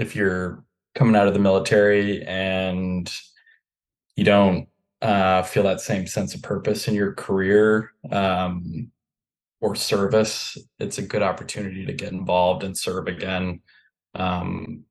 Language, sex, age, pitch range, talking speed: English, male, 20-39, 90-110 Hz, 135 wpm